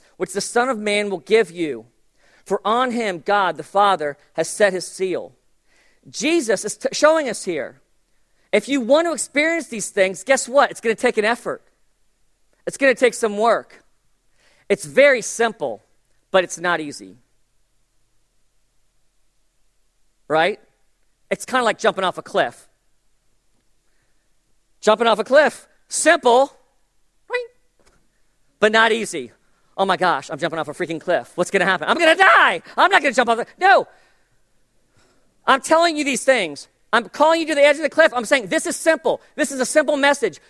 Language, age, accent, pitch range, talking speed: English, 40-59, American, 200-290 Hz, 170 wpm